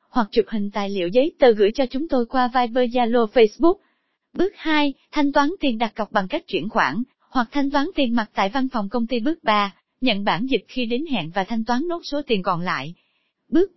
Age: 20-39